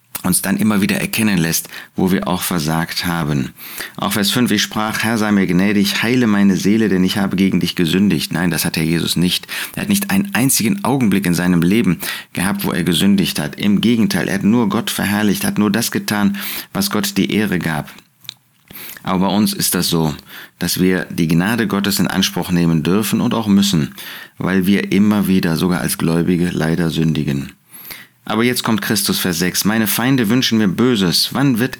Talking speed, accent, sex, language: 200 wpm, German, male, German